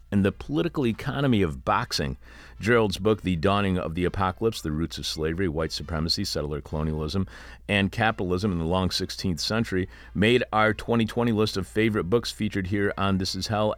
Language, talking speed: English, 180 wpm